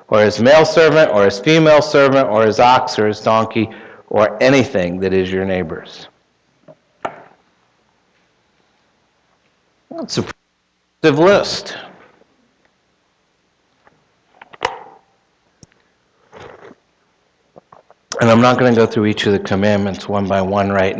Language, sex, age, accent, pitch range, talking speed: English, male, 60-79, American, 100-135 Hz, 110 wpm